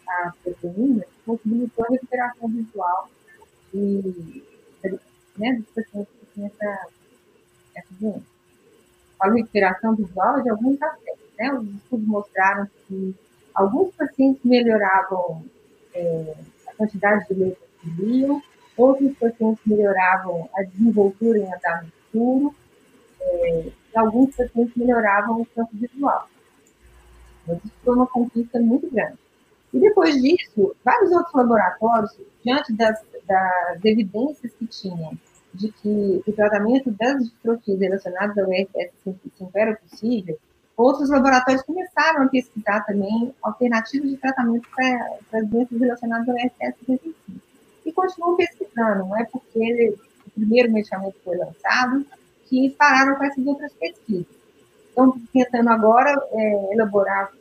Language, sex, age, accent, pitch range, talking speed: Portuguese, female, 40-59, Brazilian, 200-260 Hz, 120 wpm